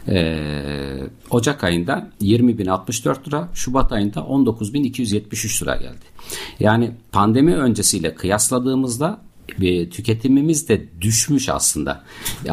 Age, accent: 50-69, native